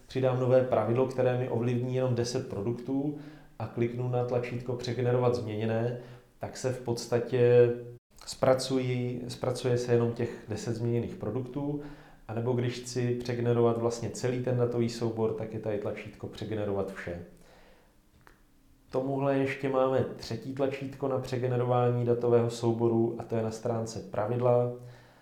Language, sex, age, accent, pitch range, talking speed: Czech, male, 30-49, native, 115-125 Hz, 140 wpm